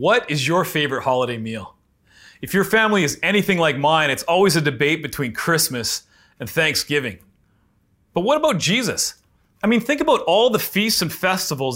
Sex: male